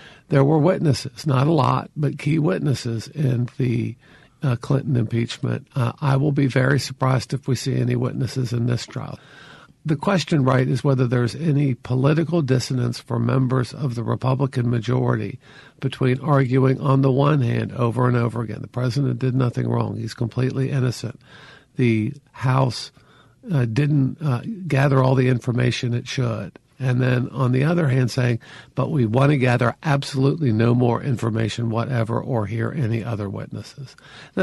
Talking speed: 165 wpm